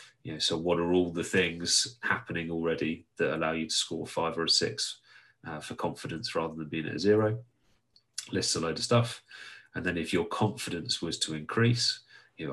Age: 30-49